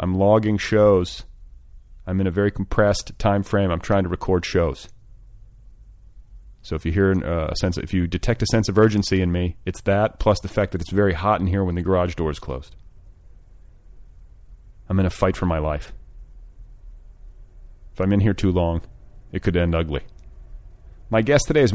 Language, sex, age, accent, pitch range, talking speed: English, male, 30-49, American, 85-105 Hz, 195 wpm